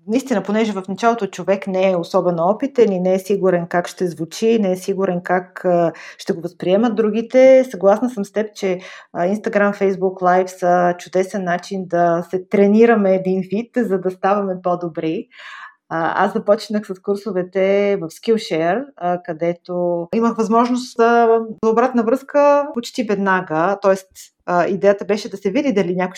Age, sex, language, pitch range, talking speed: 30-49, female, Bulgarian, 180-225 Hz, 150 wpm